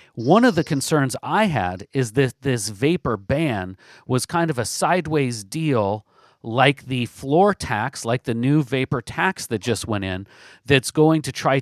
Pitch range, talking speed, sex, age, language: 120-155 Hz, 175 wpm, male, 40-59, English